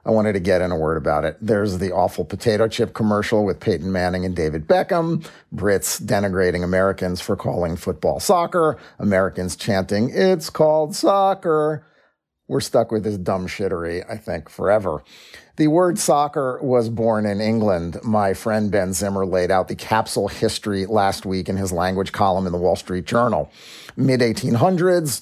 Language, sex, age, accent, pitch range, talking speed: English, male, 40-59, American, 100-145 Hz, 165 wpm